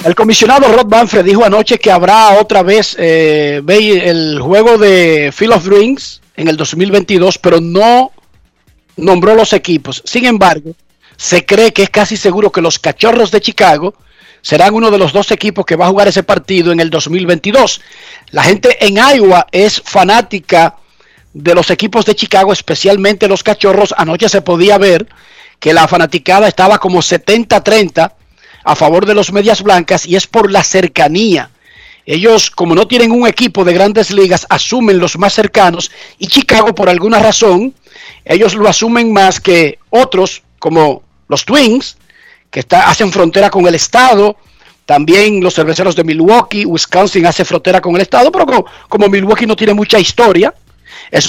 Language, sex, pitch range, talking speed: Spanish, male, 175-220 Hz, 165 wpm